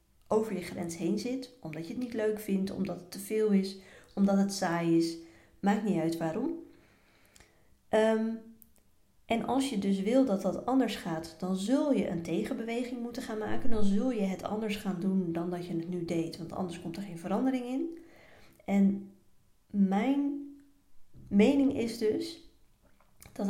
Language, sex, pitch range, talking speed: Dutch, female, 185-235 Hz, 170 wpm